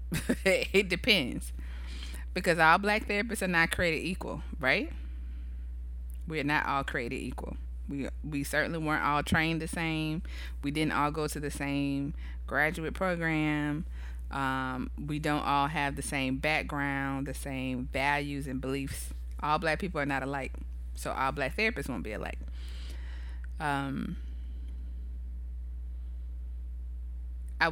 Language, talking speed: English, 130 wpm